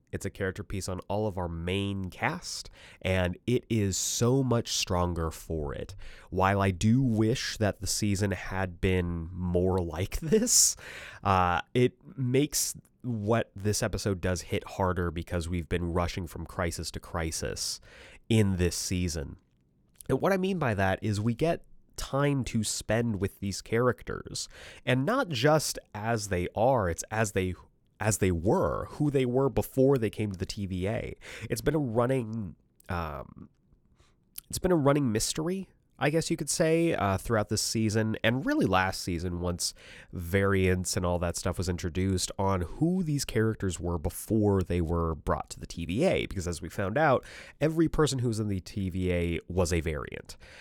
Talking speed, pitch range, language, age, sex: 170 wpm, 90-115 Hz, English, 30-49, male